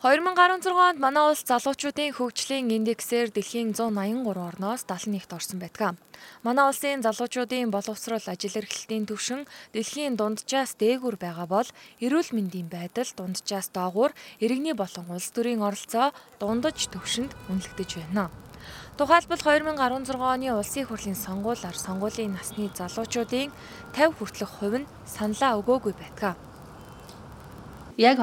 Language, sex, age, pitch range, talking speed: English, female, 20-39, 195-235 Hz, 115 wpm